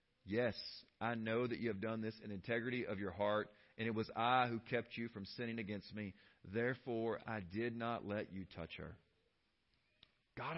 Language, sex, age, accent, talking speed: English, male, 40-59, American, 185 wpm